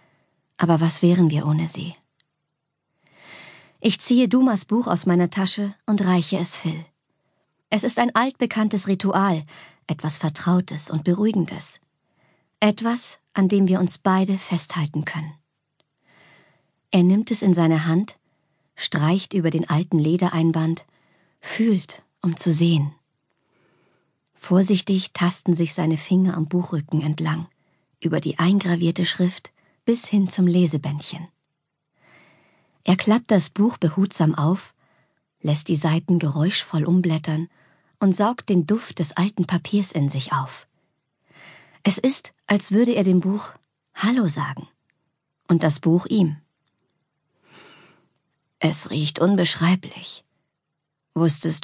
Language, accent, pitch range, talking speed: German, German, 155-190 Hz, 120 wpm